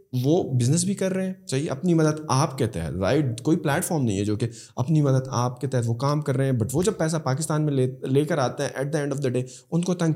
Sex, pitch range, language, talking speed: male, 135-185 Hz, Urdu, 295 wpm